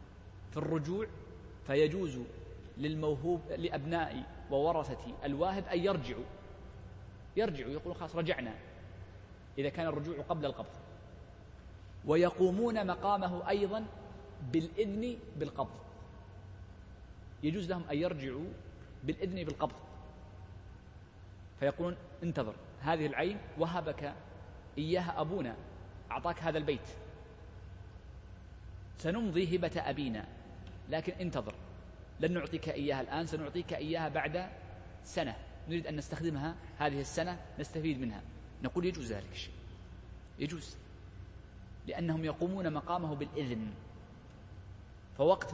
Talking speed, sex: 90 wpm, male